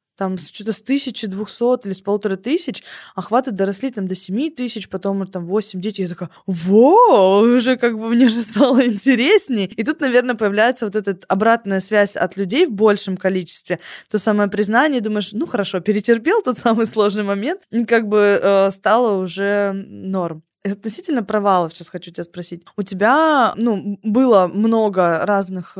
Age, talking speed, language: 20-39, 170 wpm, Russian